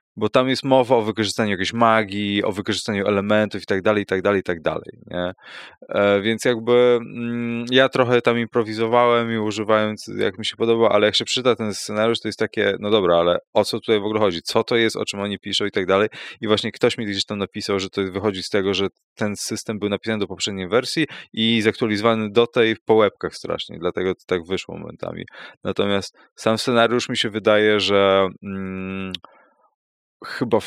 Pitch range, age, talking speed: 100-115 Hz, 20-39, 205 wpm